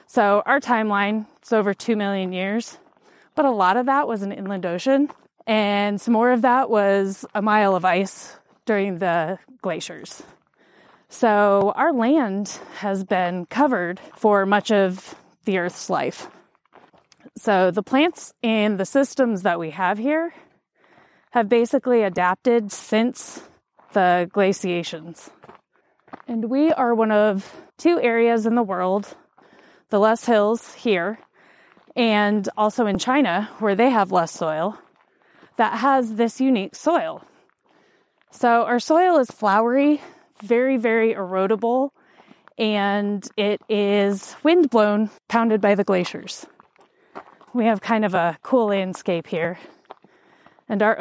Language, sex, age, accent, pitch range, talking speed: English, female, 20-39, American, 195-250 Hz, 135 wpm